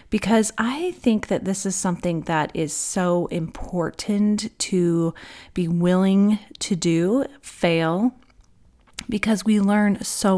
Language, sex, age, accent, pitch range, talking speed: English, female, 30-49, American, 170-205 Hz, 120 wpm